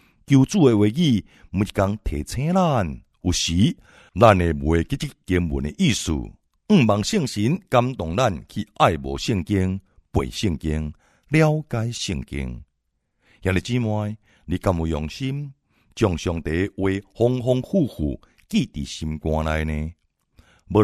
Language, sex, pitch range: Chinese, male, 80-120 Hz